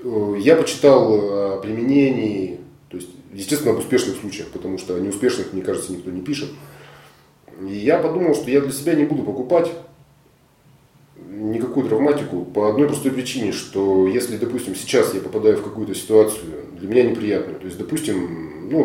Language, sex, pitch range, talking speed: Russian, male, 95-135 Hz, 160 wpm